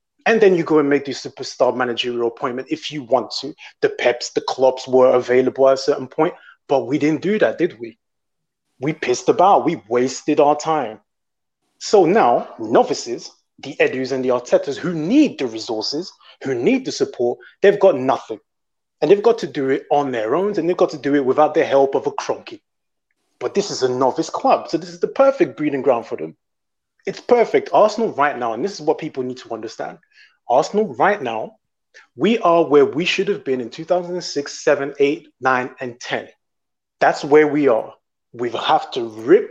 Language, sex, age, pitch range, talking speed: English, male, 30-49, 135-215 Hz, 200 wpm